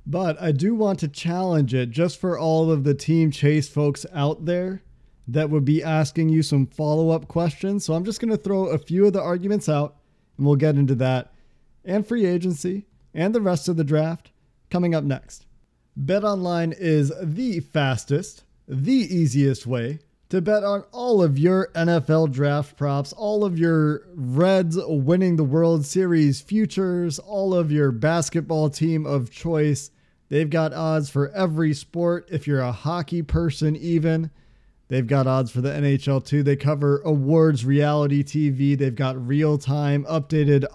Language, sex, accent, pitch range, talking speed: English, male, American, 140-170 Hz, 170 wpm